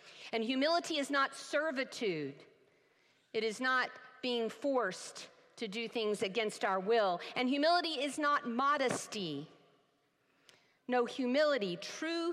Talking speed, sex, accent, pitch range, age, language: 115 wpm, female, American, 210-280 Hz, 50-69, English